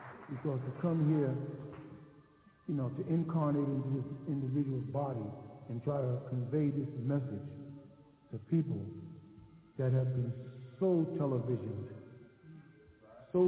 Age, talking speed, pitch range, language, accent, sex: 60-79, 115 wpm, 130-155 Hz, English, American, male